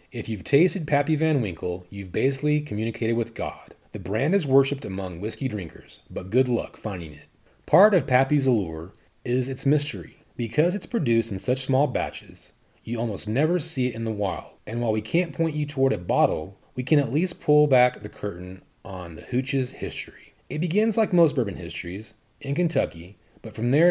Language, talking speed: English, 195 wpm